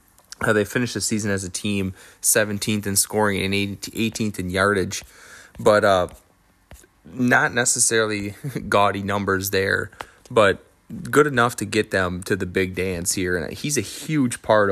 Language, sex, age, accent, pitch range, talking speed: English, male, 20-39, American, 95-110 Hz, 155 wpm